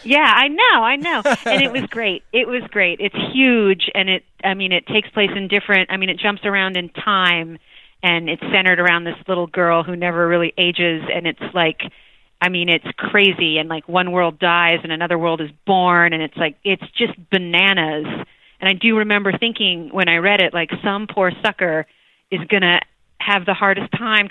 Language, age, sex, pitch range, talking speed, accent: English, 30-49, female, 180-215 Hz, 205 wpm, American